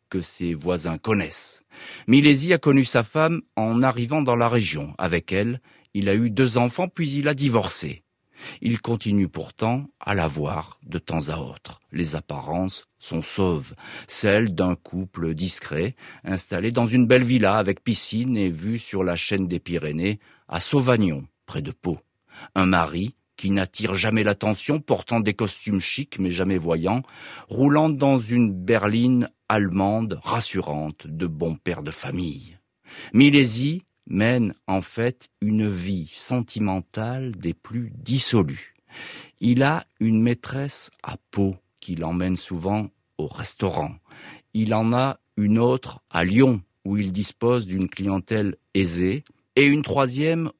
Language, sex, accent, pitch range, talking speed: French, male, French, 95-125 Hz, 145 wpm